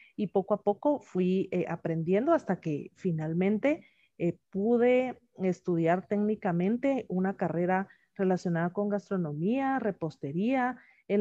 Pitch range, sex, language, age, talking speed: 170-215 Hz, female, Spanish, 40-59, 110 wpm